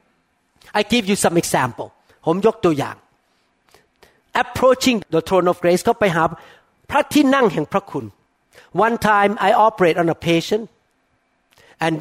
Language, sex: Thai, male